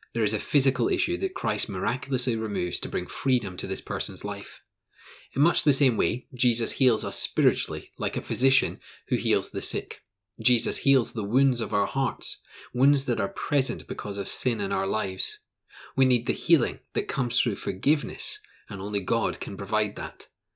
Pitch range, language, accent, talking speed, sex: 105-135 Hz, English, British, 185 wpm, male